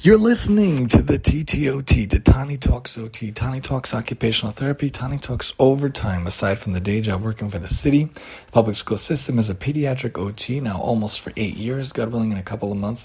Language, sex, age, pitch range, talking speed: English, male, 30-49, 105-130 Hz, 200 wpm